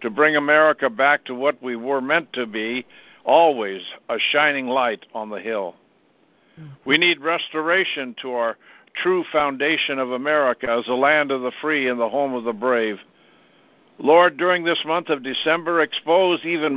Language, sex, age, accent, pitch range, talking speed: English, male, 60-79, American, 120-150 Hz, 170 wpm